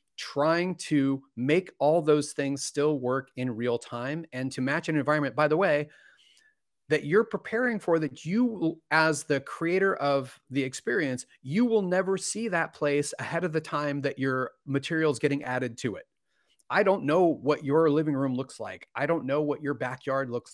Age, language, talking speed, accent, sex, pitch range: 30-49, English, 190 wpm, American, male, 140-170 Hz